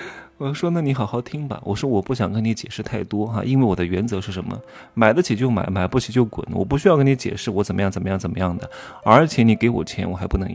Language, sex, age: Chinese, male, 30-49